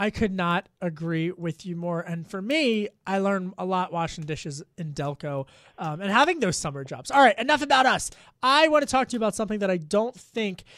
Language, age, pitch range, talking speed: English, 30-49, 165-210 Hz, 230 wpm